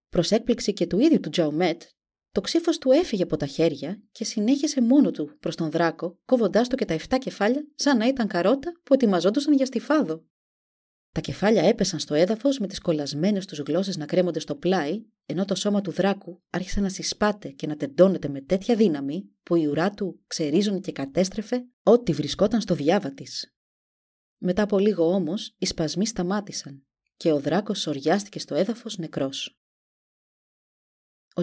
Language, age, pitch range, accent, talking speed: Greek, 30-49, 160-230 Hz, native, 170 wpm